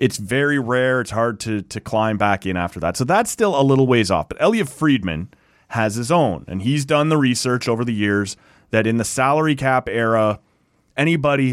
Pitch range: 95-135 Hz